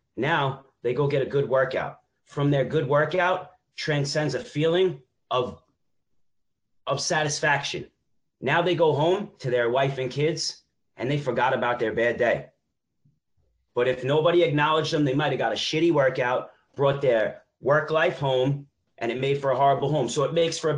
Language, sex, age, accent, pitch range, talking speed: English, male, 30-49, American, 125-160 Hz, 180 wpm